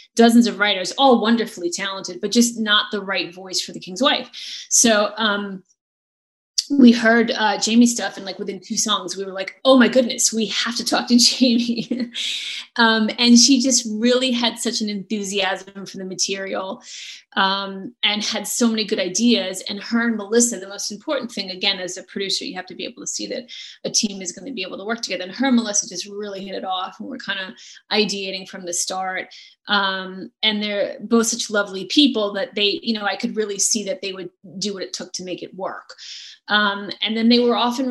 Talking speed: 220 wpm